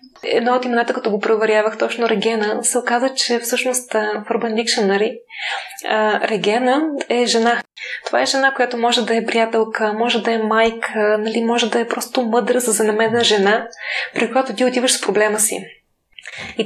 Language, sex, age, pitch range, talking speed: Bulgarian, female, 20-39, 215-245 Hz, 165 wpm